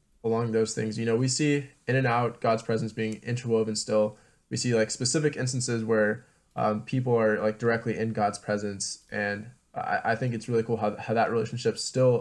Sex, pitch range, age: male, 110-125 Hz, 20-39